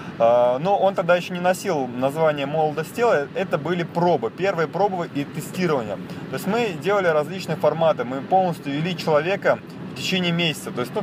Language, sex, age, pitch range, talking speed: Russian, male, 20-39, 145-180 Hz, 175 wpm